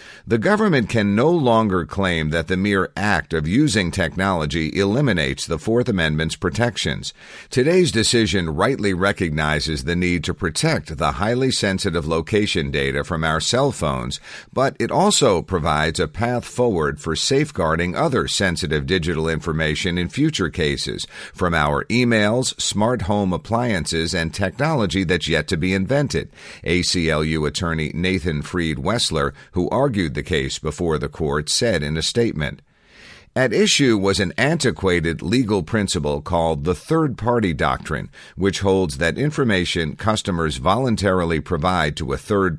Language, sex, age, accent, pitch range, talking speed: English, male, 50-69, American, 80-110 Hz, 145 wpm